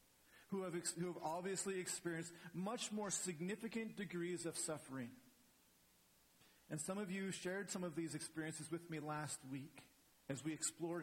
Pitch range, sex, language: 115-170 Hz, male, English